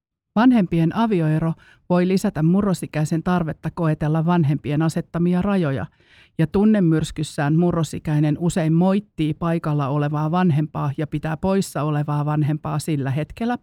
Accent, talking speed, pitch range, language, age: native, 110 wpm, 150-180 Hz, Finnish, 50-69